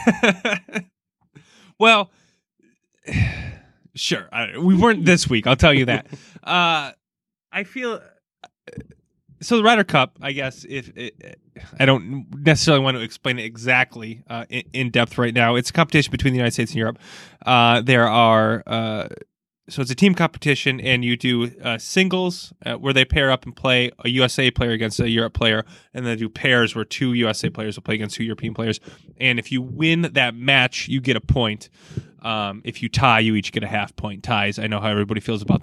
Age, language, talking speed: 20-39, English, 190 wpm